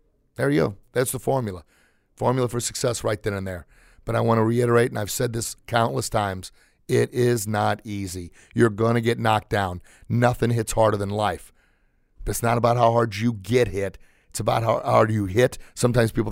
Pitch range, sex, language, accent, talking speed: 105-120 Hz, male, English, American, 200 wpm